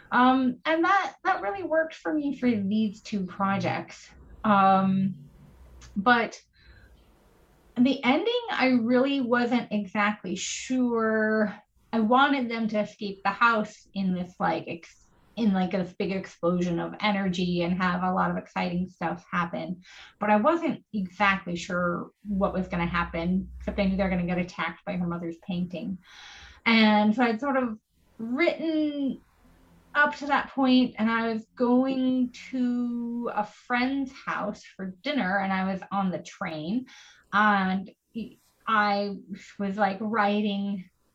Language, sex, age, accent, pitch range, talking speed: English, female, 30-49, American, 190-240 Hz, 145 wpm